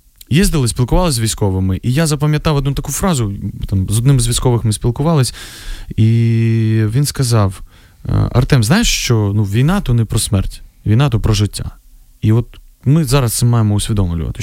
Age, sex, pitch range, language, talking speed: 20-39, male, 100-135 Hz, Ukrainian, 165 wpm